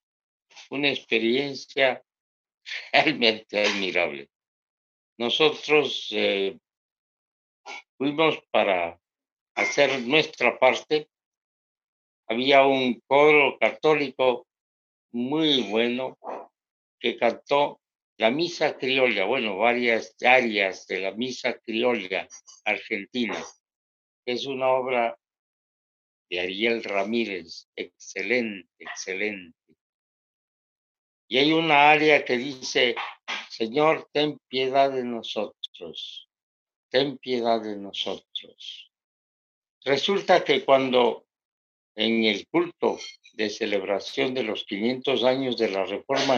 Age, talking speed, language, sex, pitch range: 60-79, 90 wpm, Spanish, male, 105-135 Hz